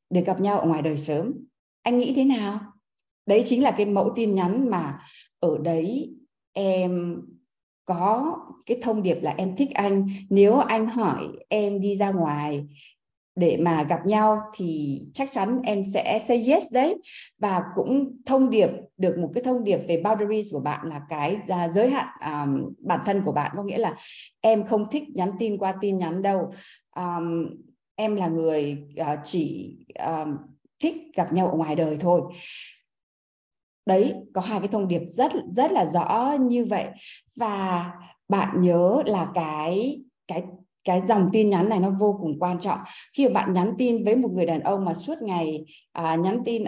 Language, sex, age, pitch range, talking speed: Vietnamese, female, 20-39, 170-225 Hz, 180 wpm